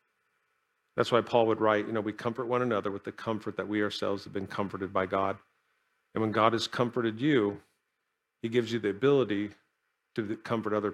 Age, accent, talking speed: 40-59, American, 195 wpm